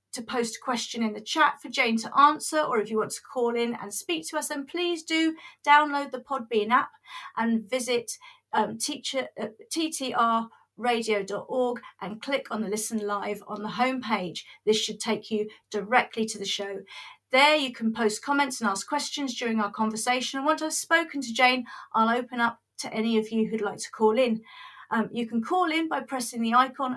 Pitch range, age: 220-270 Hz, 40-59